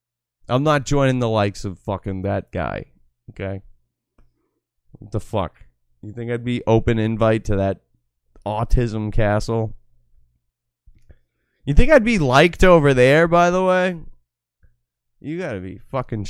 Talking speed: 135 wpm